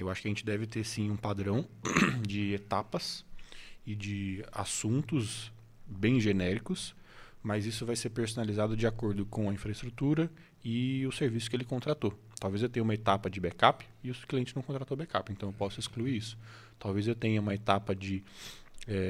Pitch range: 105-120 Hz